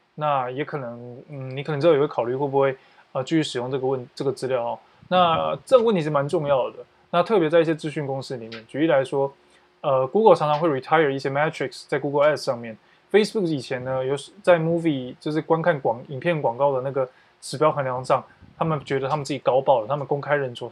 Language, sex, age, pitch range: Chinese, male, 20-39, 135-170 Hz